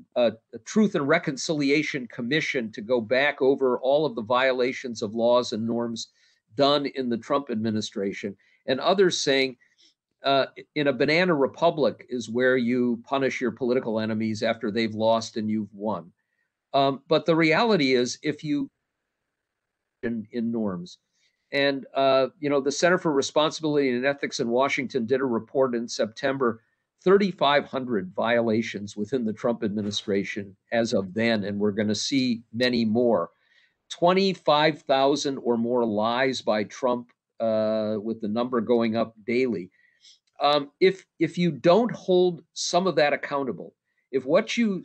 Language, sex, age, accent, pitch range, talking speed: English, male, 50-69, American, 115-155 Hz, 150 wpm